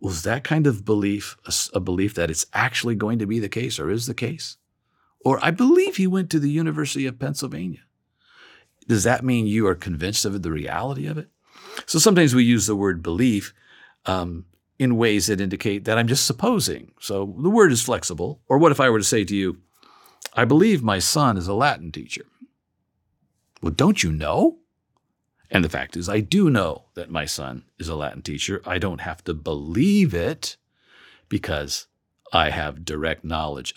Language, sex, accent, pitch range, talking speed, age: English, male, American, 95-130 Hz, 195 wpm, 50-69